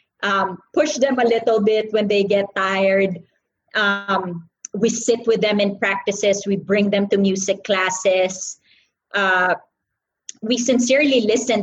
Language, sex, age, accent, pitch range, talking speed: English, female, 20-39, Filipino, 195-220 Hz, 140 wpm